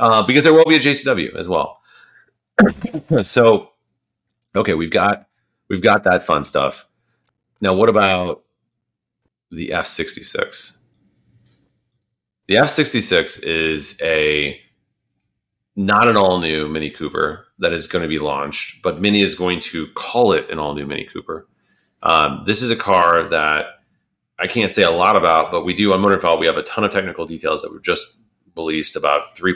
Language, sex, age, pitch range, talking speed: English, male, 30-49, 80-110 Hz, 175 wpm